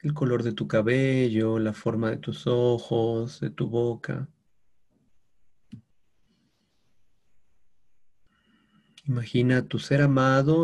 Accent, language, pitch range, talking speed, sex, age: Mexican, Spanish, 110-135 Hz, 100 wpm, male, 40-59